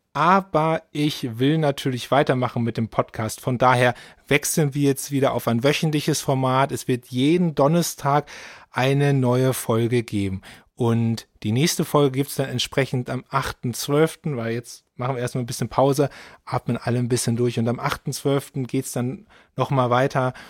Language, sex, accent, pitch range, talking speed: German, male, German, 125-145 Hz, 165 wpm